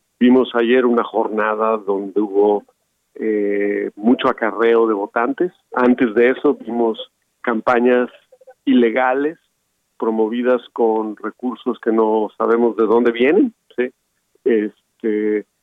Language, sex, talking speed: Spanish, male, 110 wpm